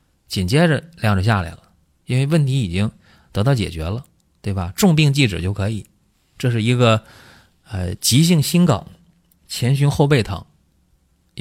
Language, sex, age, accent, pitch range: Chinese, male, 20-39, native, 95-140 Hz